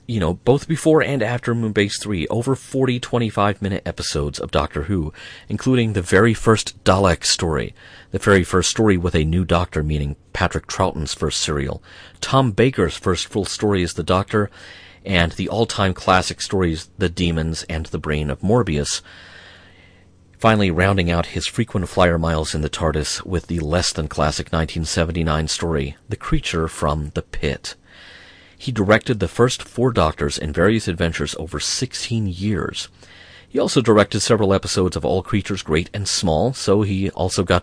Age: 40-59